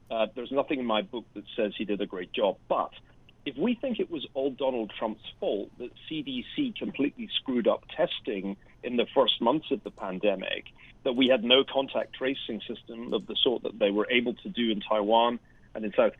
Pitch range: 115-180 Hz